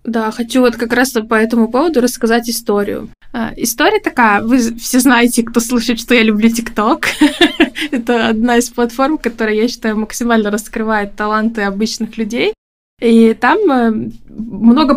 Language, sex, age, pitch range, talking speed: Russian, female, 20-39, 225-265 Hz, 145 wpm